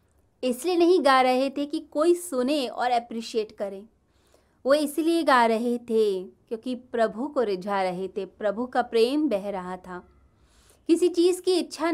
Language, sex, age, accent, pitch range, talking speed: Hindi, female, 30-49, native, 205-285 Hz, 160 wpm